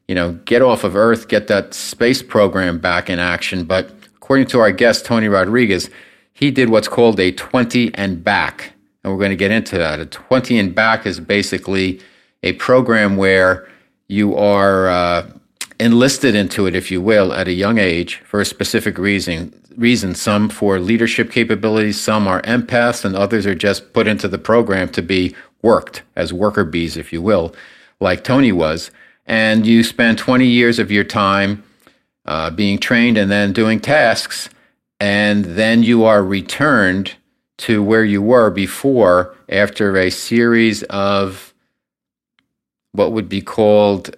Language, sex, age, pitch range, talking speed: English, male, 50-69, 95-115 Hz, 165 wpm